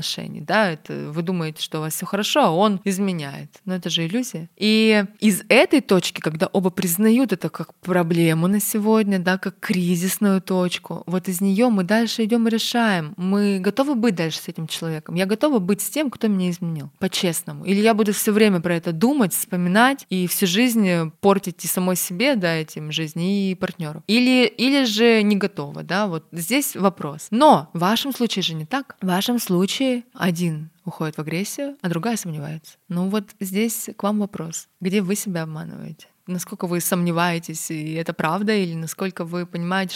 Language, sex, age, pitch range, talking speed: Russian, female, 20-39, 170-215 Hz, 185 wpm